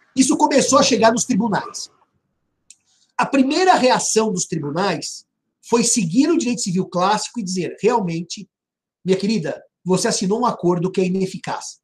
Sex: male